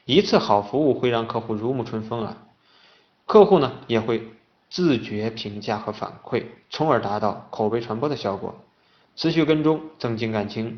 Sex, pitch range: male, 110-135 Hz